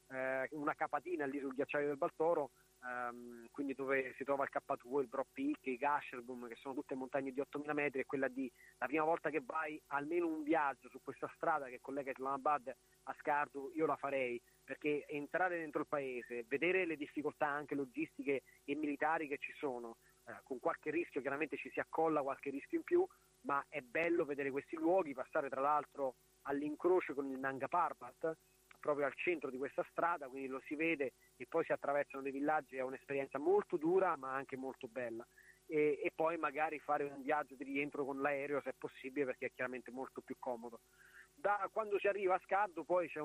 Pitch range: 135-155 Hz